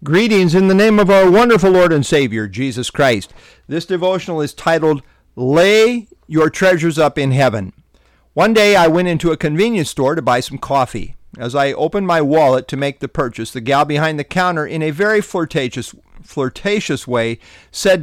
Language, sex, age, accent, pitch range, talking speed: English, male, 50-69, American, 135-200 Hz, 185 wpm